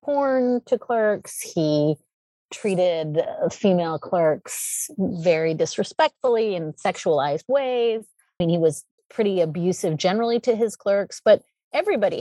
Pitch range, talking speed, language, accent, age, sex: 160-210 Hz, 120 wpm, English, American, 30-49, female